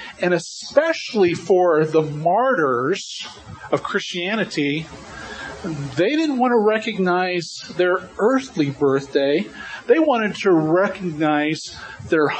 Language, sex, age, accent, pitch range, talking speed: English, male, 40-59, American, 150-225 Hz, 95 wpm